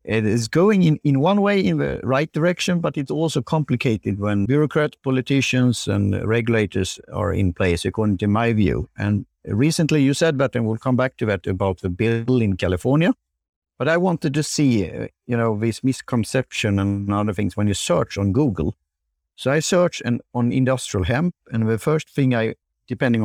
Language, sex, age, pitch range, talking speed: English, male, 50-69, 100-140 Hz, 185 wpm